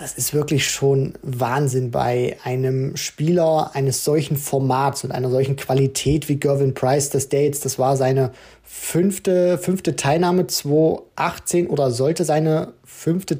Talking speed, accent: 145 wpm, German